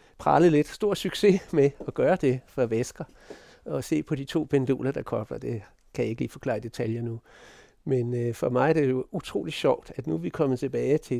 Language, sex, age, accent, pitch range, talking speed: Danish, male, 60-79, native, 125-165 Hz, 230 wpm